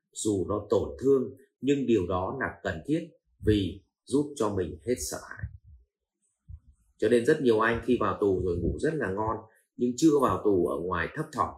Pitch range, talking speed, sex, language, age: 95-135 Hz, 195 wpm, male, Vietnamese, 30-49